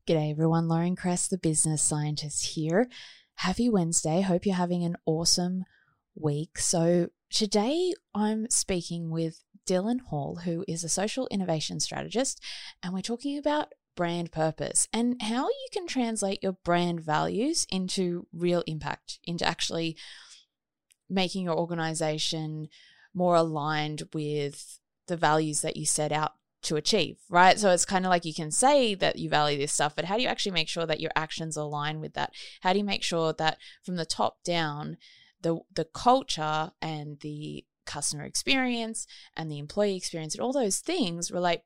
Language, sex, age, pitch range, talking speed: English, female, 20-39, 155-200 Hz, 165 wpm